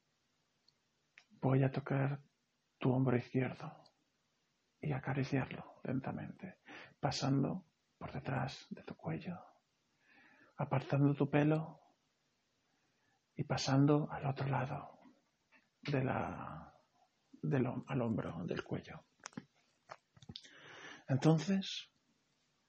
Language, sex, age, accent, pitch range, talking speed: Spanish, male, 50-69, Spanish, 130-155 Hz, 75 wpm